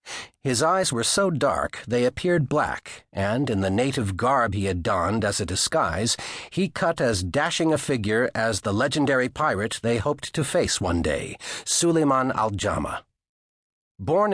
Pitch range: 105-150 Hz